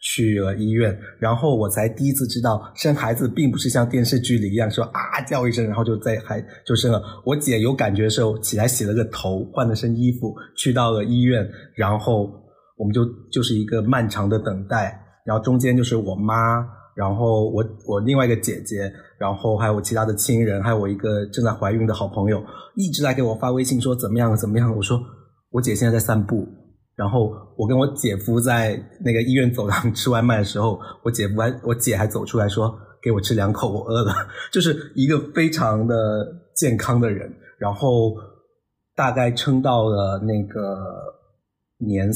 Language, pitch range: Chinese, 105-120 Hz